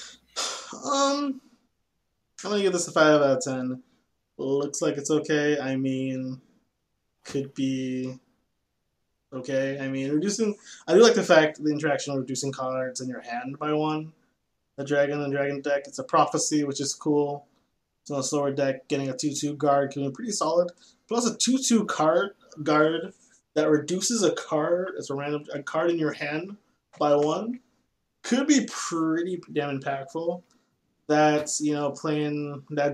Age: 20-39